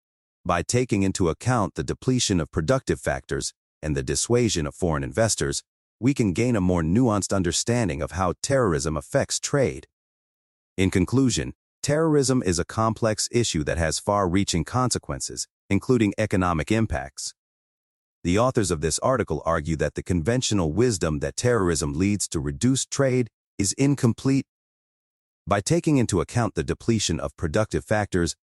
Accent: American